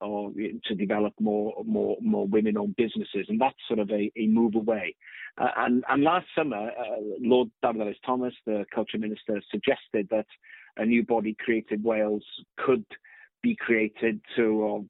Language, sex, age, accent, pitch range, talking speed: English, male, 40-59, British, 110-120 Hz, 160 wpm